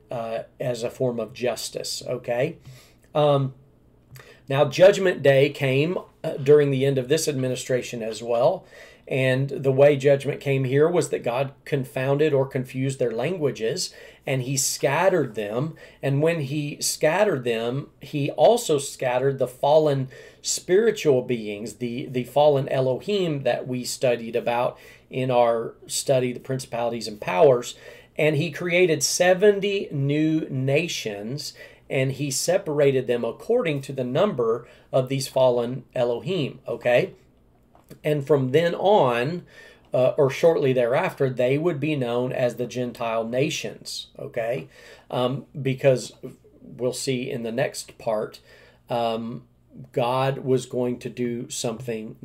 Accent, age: American, 40-59